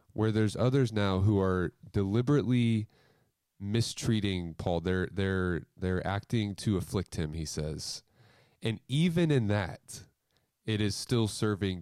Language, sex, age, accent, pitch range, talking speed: English, male, 20-39, American, 90-110 Hz, 130 wpm